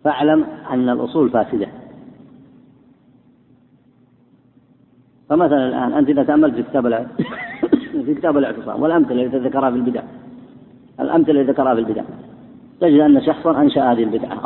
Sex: female